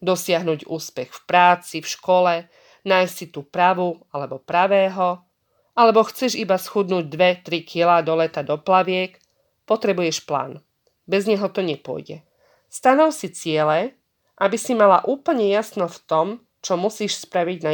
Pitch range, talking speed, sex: 165-215 Hz, 145 wpm, female